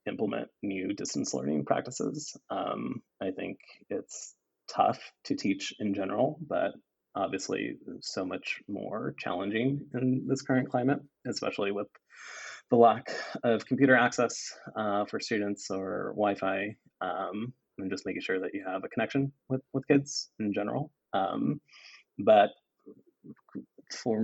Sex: male